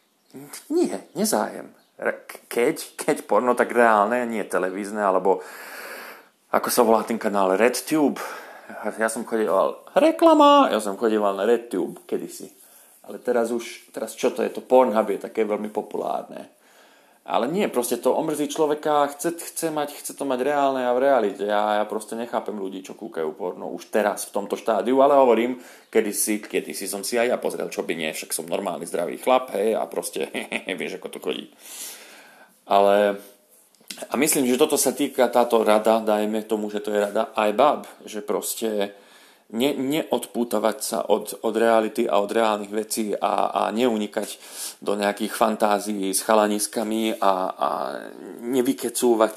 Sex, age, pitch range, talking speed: male, 30-49, 105-125 Hz, 165 wpm